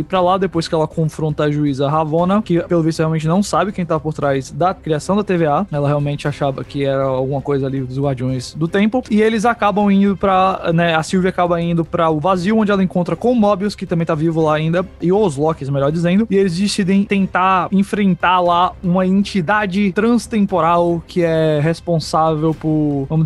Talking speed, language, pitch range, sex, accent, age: 205 wpm, Portuguese, 155-185 Hz, male, Brazilian, 20-39